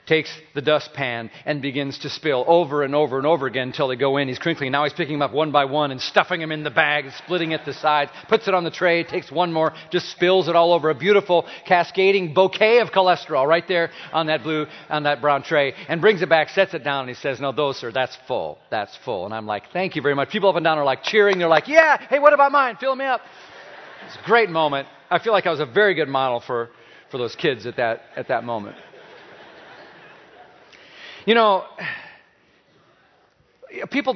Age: 40-59